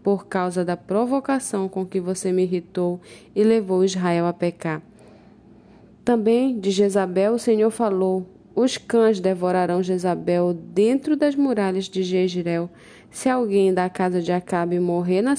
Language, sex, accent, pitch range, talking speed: Portuguese, female, Brazilian, 180-210 Hz, 145 wpm